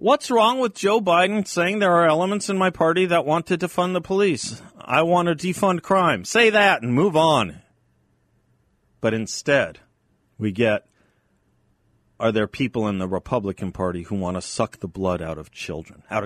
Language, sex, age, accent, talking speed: English, male, 40-59, American, 180 wpm